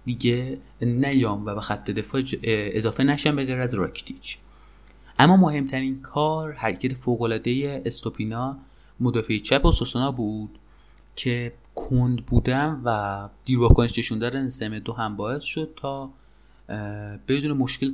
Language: Persian